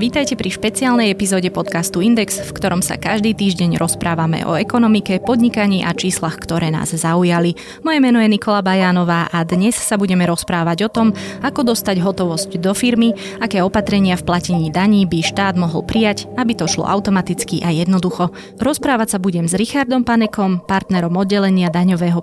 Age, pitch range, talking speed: 20-39, 175-210 Hz, 165 wpm